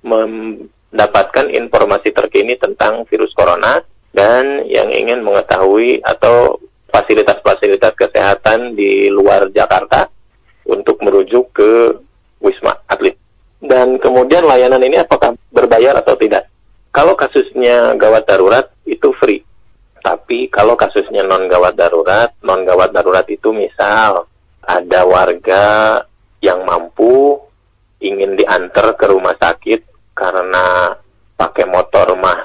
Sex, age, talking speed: male, 30-49, 105 wpm